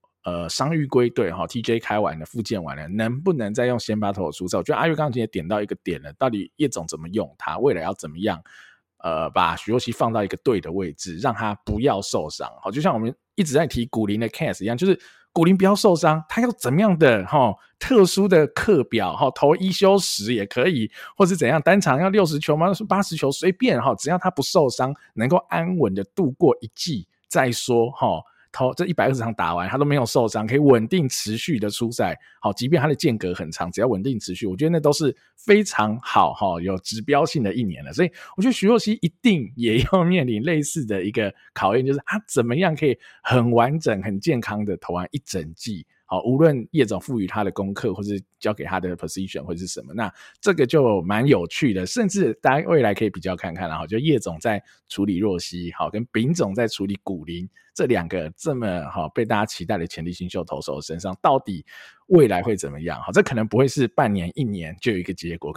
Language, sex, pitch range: Chinese, male, 95-155 Hz